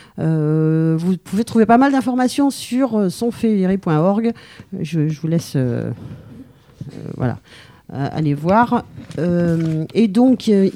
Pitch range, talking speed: 180-225 Hz, 125 wpm